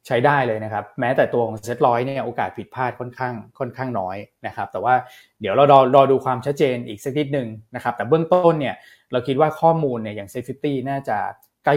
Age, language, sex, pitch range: 20-39, Thai, male, 115-140 Hz